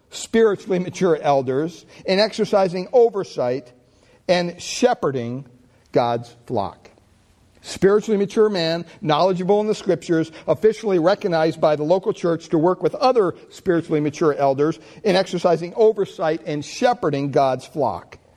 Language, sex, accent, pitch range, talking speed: English, male, American, 140-195 Hz, 120 wpm